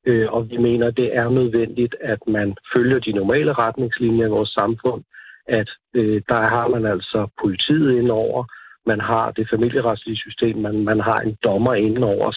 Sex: male